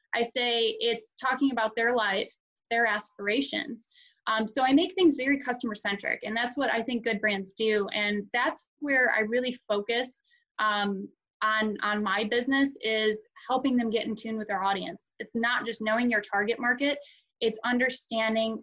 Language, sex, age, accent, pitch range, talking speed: English, female, 20-39, American, 210-245 Hz, 175 wpm